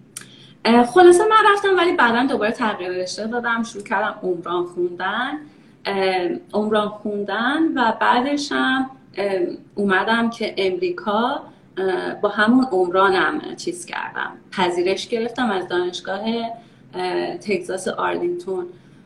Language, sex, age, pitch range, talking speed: Persian, female, 30-49, 195-310 Hz, 95 wpm